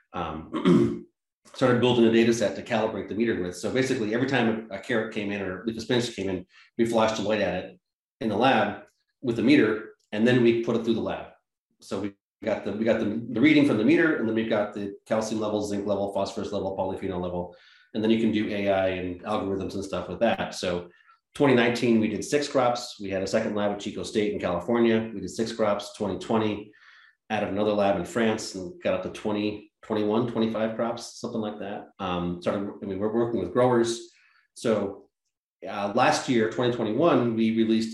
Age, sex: 30-49, male